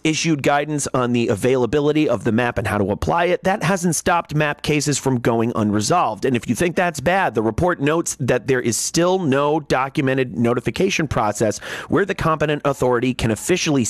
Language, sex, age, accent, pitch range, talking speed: English, male, 30-49, American, 115-170 Hz, 190 wpm